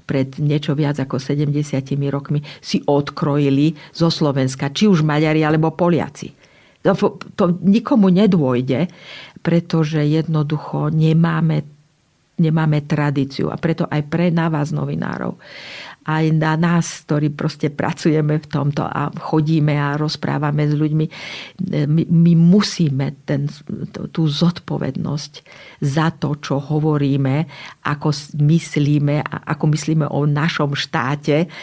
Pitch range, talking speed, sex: 145-165 Hz, 115 wpm, female